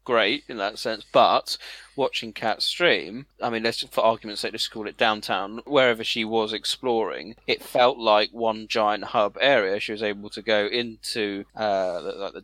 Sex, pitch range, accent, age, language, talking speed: male, 105-120 Hz, British, 30-49, English, 190 wpm